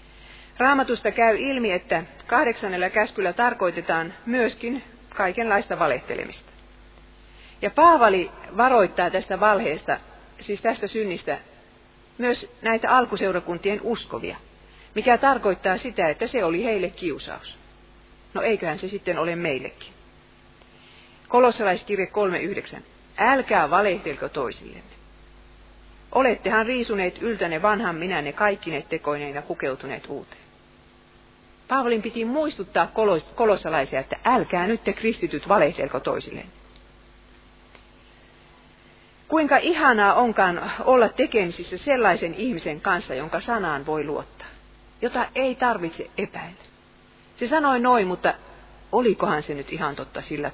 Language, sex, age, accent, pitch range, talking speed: Finnish, female, 40-59, native, 170-240 Hz, 105 wpm